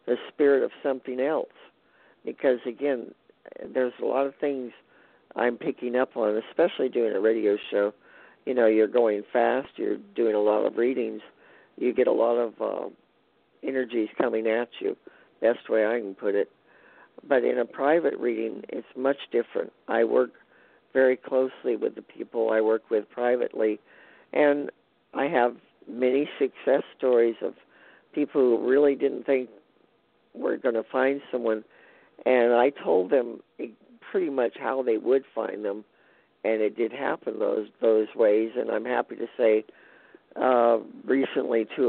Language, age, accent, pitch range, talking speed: English, 50-69, American, 115-140 Hz, 160 wpm